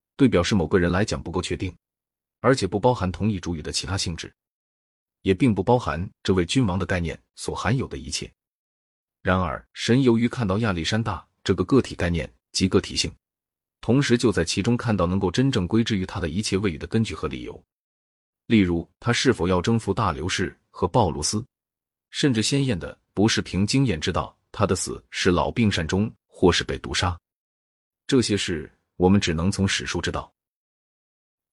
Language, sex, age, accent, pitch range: Chinese, male, 30-49, native, 85-110 Hz